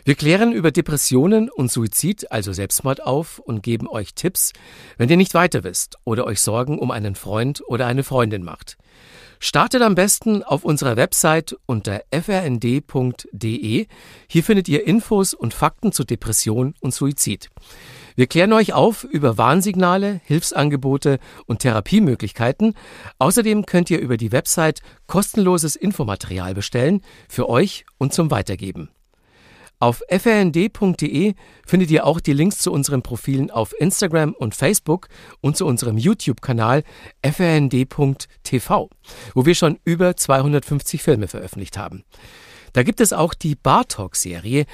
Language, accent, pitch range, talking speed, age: German, German, 115-170 Hz, 135 wpm, 50-69